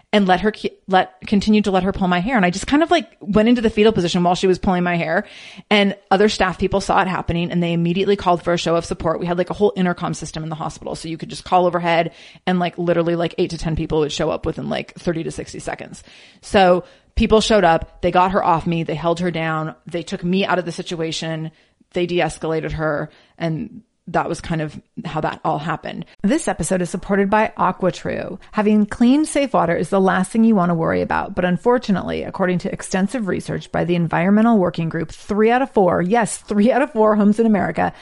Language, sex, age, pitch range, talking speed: English, female, 30-49, 170-210 Hz, 240 wpm